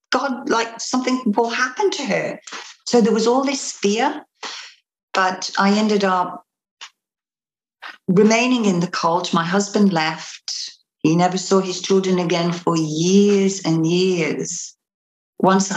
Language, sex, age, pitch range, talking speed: English, female, 60-79, 180-225 Hz, 135 wpm